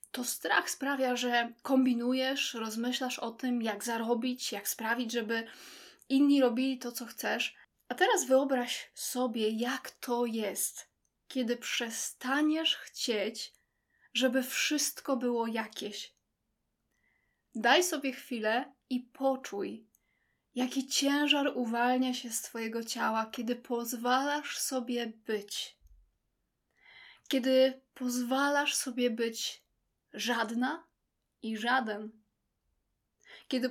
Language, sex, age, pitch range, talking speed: Polish, female, 20-39, 235-275 Hz, 100 wpm